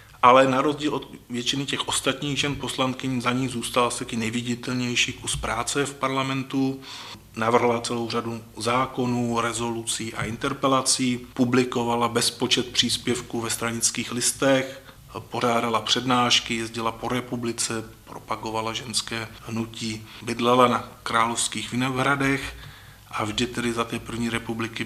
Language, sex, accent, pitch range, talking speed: Czech, male, native, 115-130 Hz, 125 wpm